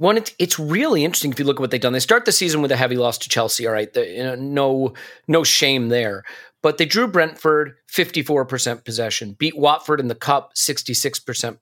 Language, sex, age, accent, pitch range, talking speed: English, male, 40-59, American, 125-155 Hz, 215 wpm